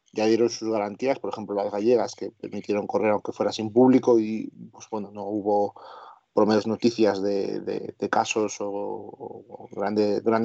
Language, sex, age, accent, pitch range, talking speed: Spanish, male, 30-49, Spanish, 105-120 Hz, 185 wpm